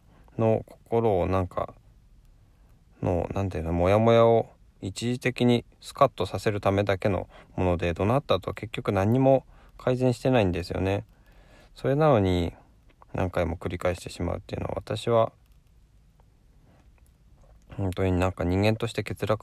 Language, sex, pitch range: Japanese, male, 90-115 Hz